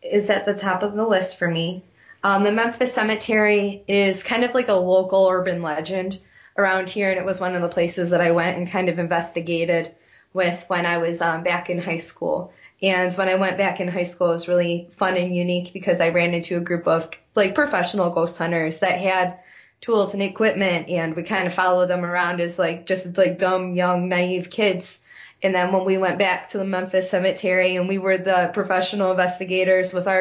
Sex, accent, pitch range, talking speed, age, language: female, American, 175-200 Hz, 215 wpm, 20-39, English